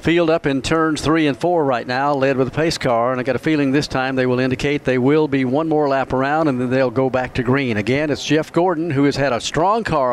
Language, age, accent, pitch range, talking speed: English, 50-69, American, 125-150 Hz, 285 wpm